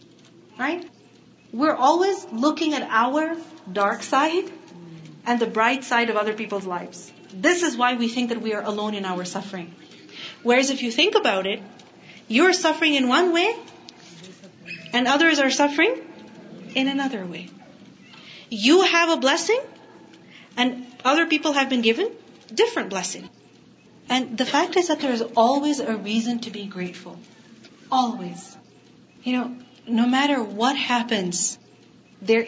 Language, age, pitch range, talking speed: Urdu, 30-49, 220-280 Hz, 145 wpm